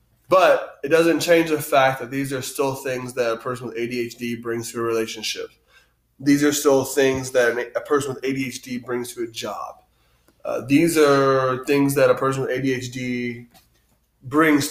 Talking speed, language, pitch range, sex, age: 175 wpm, English, 125-150 Hz, male, 20-39